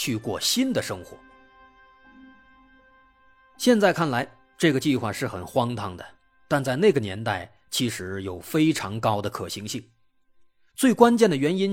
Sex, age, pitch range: male, 30-49, 115-175 Hz